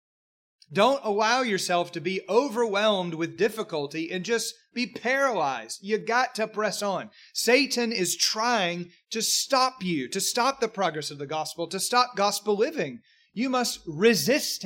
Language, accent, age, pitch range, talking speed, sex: English, American, 30-49, 145-215 Hz, 150 wpm, male